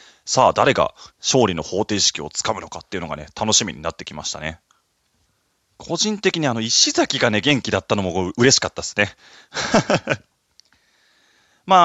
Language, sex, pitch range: Japanese, male, 95-150 Hz